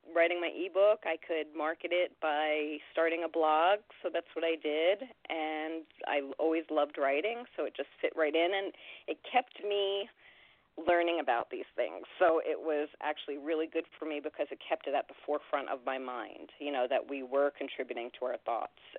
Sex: female